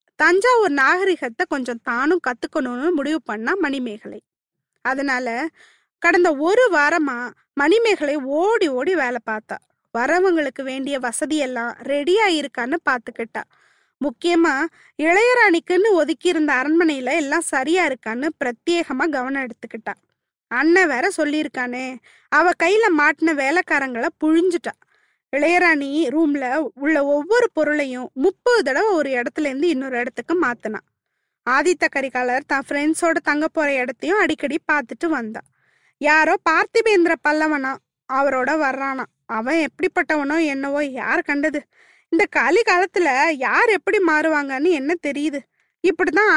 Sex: female